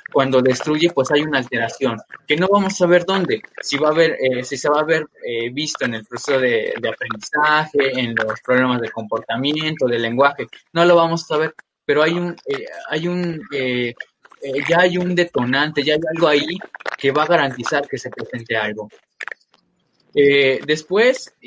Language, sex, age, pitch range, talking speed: Spanish, male, 20-39, 130-175 Hz, 190 wpm